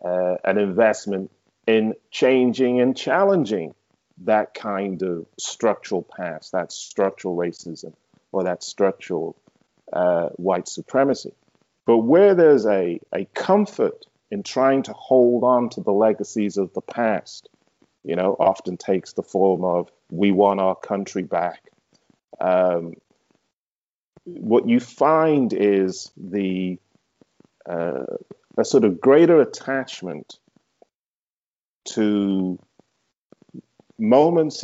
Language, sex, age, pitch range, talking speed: English, male, 40-59, 95-125 Hz, 115 wpm